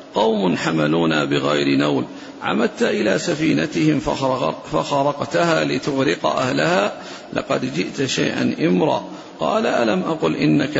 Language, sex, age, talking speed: Arabic, male, 50-69, 100 wpm